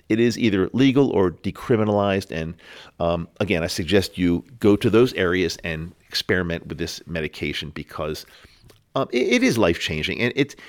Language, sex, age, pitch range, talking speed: English, male, 50-69, 95-135 Hz, 165 wpm